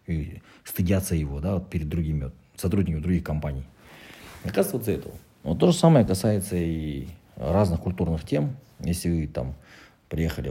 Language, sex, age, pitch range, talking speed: Russian, male, 40-59, 80-100 Hz, 135 wpm